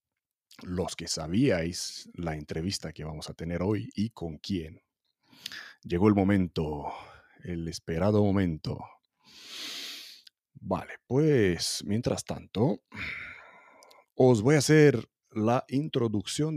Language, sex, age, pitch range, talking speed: Spanish, male, 40-59, 95-120 Hz, 105 wpm